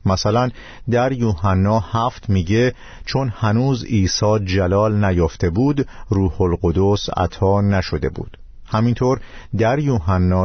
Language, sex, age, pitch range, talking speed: Persian, male, 50-69, 90-115 Hz, 110 wpm